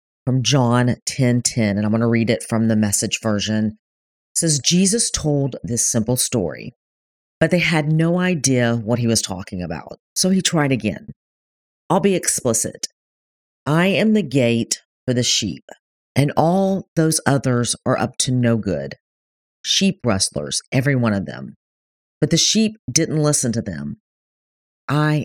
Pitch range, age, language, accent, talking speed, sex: 105-150 Hz, 40-59, English, American, 160 wpm, female